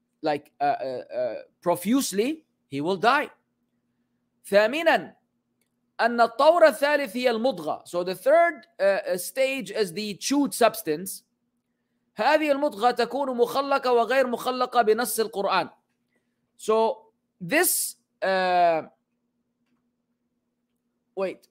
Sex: male